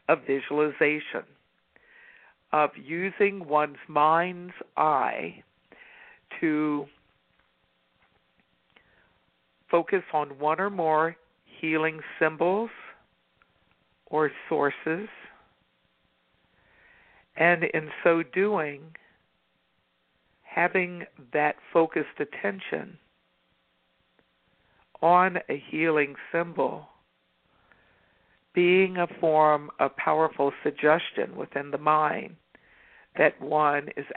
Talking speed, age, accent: 70 wpm, 60-79, American